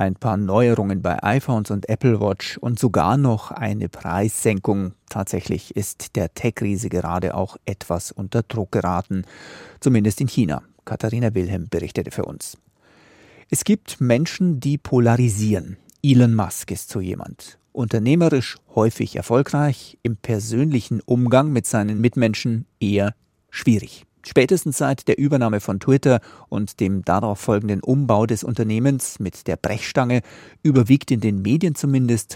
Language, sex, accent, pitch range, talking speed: German, male, German, 105-130 Hz, 135 wpm